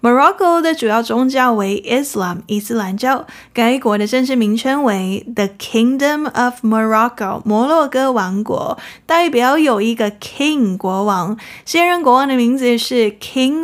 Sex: female